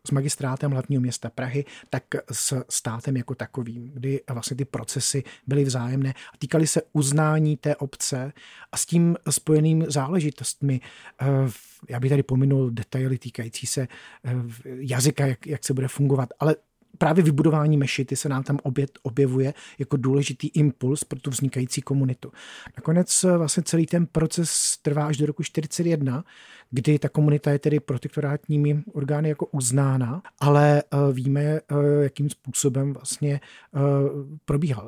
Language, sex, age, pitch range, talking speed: Czech, male, 40-59, 130-150 Hz, 140 wpm